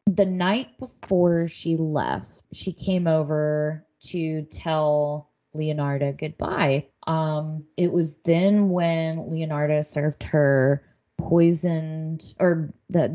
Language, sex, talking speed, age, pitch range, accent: English, female, 105 wpm, 20-39, 155-180 Hz, American